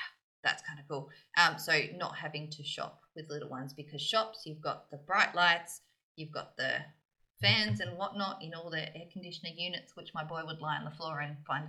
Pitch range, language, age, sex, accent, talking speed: 155-215 Hz, English, 20-39, female, Australian, 215 wpm